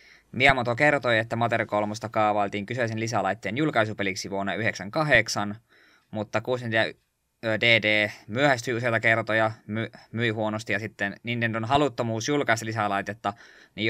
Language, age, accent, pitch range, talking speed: Finnish, 20-39, native, 100-120 Hz, 110 wpm